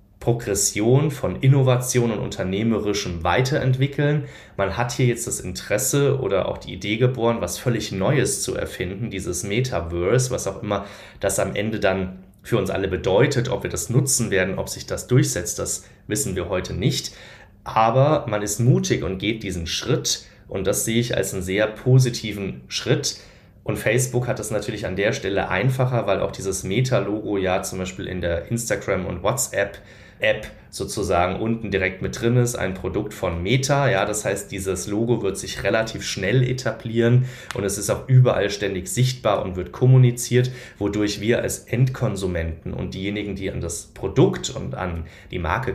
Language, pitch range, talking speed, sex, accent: German, 95-125 Hz, 175 wpm, male, German